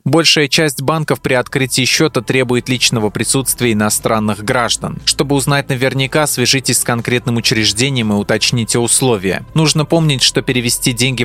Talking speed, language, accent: 140 wpm, Russian, native